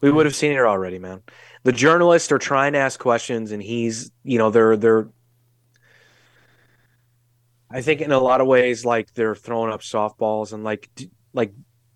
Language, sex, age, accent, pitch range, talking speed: English, male, 30-49, American, 115-130 Hz, 175 wpm